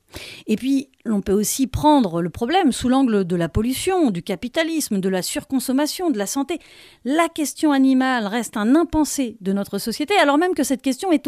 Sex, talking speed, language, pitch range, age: female, 190 wpm, French, 210-290 Hz, 40-59